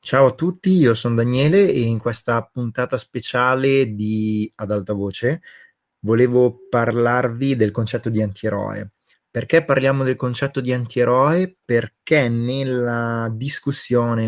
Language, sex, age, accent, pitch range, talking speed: Italian, male, 20-39, native, 110-125 Hz, 125 wpm